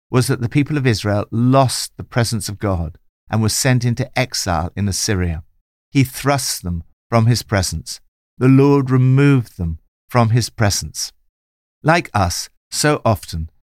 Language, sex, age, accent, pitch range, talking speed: English, male, 60-79, British, 85-120 Hz, 155 wpm